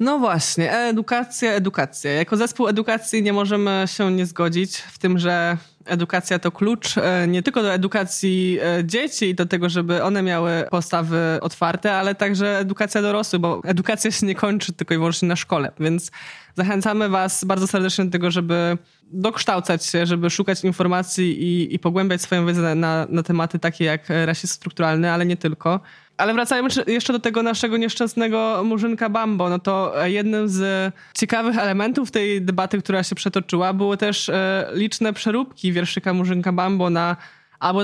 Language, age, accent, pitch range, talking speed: Polish, 20-39, native, 180-210 Hz, 165 wpm